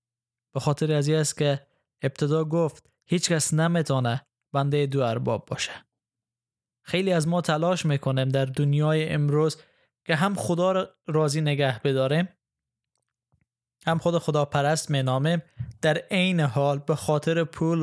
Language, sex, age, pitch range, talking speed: Persian, male, 10-29, 125-155 Hz, 135 wpm